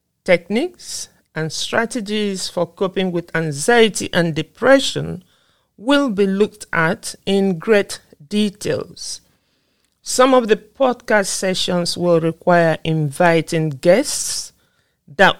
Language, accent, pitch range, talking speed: English, Nigerian, 165-210 Hz, 100 wpm